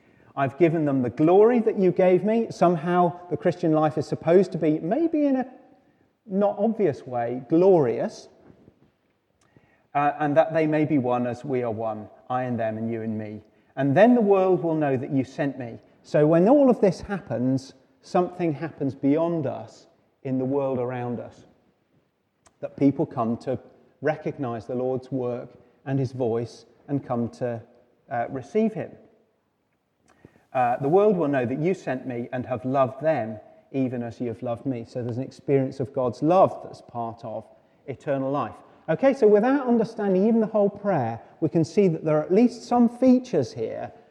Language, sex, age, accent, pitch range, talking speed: English, male, 30-49, British, 130-190 Hz, 180 wpm